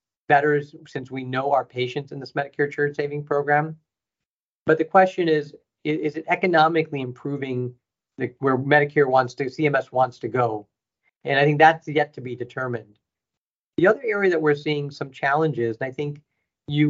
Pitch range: 125-155 Hz